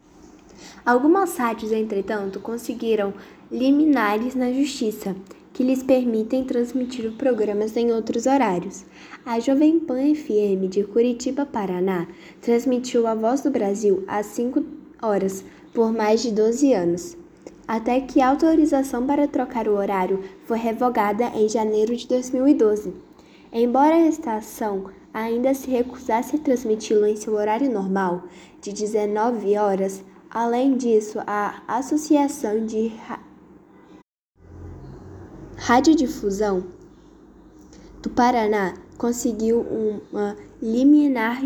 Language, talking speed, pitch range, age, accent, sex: Portuguese, 110 wpm, 210-260 Hz, 10-29, Brazilian, female